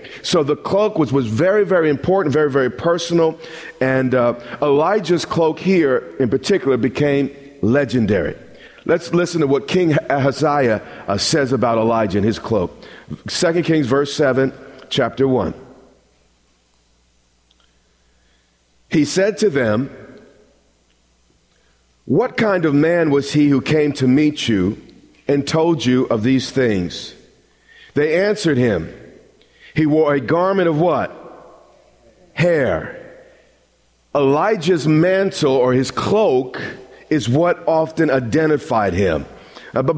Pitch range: 130-175 Hz